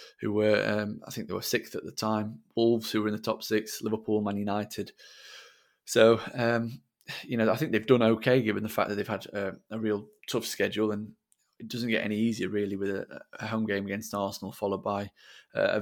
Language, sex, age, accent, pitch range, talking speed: English, male, 20-39, British, 105-115 Hz, 220 wpm